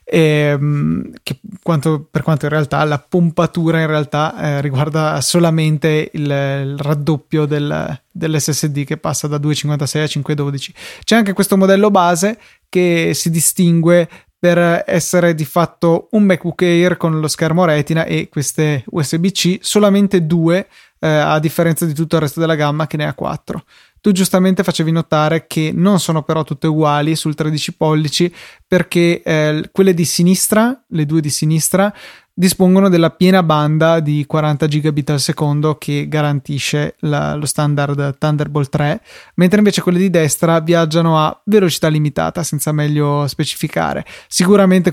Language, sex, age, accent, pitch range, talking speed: Italian, male, 20-39, native, 150-175 Hz, 150 wpm